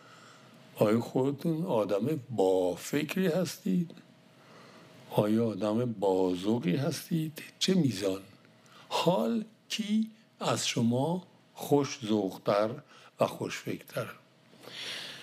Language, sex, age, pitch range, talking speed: Persian, male, 60-79, 130-175 Hz, 80 wpm